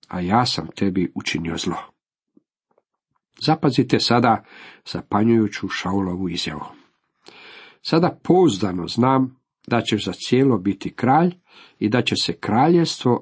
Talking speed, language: 115 wpm, Croatian